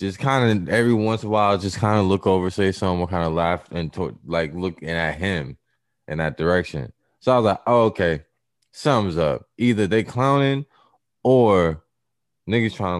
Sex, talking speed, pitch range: male, 200 wpm, 80-105 Hz